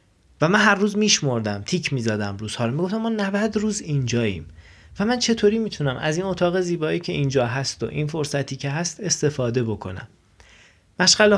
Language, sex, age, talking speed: Persian, male, 30-49, 175 wpm